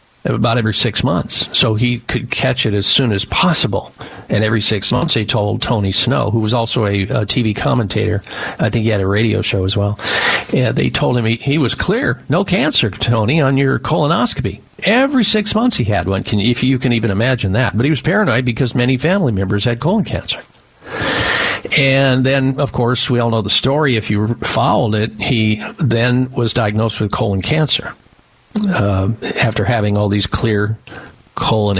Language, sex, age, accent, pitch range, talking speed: English, male, 50-69, American, 100-130 Hz, 190 wpm